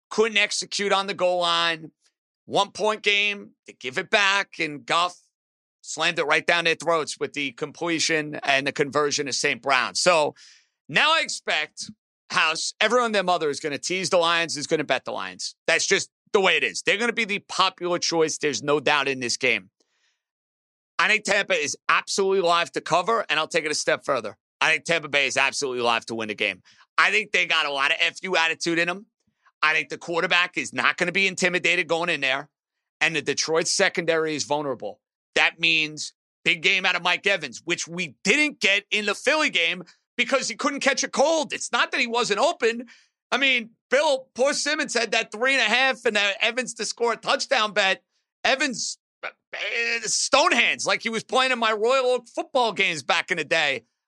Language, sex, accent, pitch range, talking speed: English, male, American, 160-220 Hz, 210 wpm